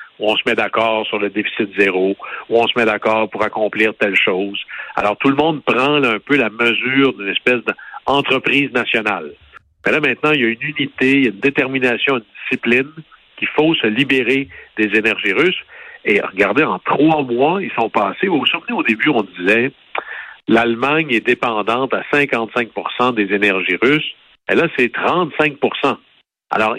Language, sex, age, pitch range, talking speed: French, male, 60-79, 110-140 Hz, 190 wpm